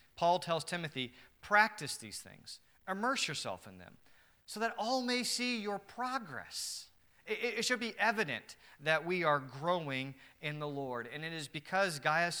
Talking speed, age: 165 wpm, 40-59